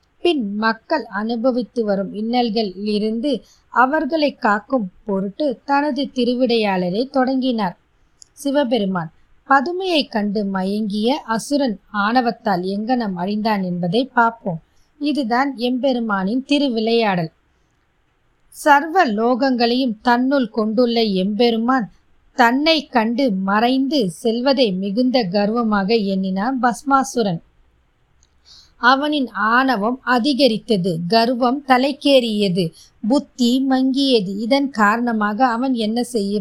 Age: 20-39